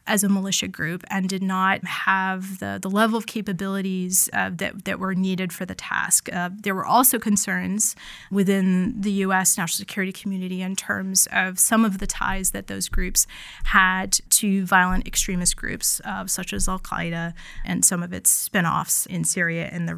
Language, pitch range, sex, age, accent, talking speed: English, 185-210 Hz, female, 30-49, American, 180 wpm